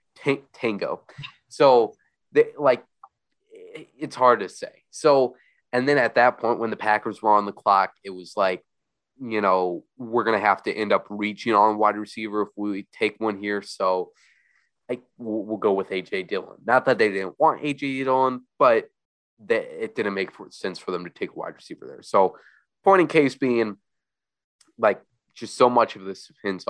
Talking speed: 180 wpm